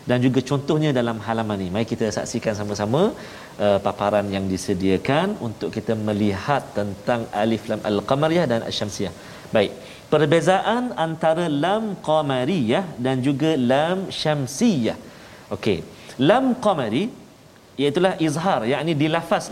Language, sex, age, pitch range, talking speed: Malayalam, male, 40-59, 120-170 Hz, 125 wpm